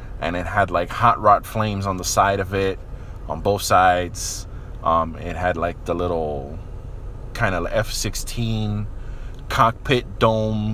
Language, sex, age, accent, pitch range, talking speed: English, male, 20-39, American, 90-115 Hz, 145 wpm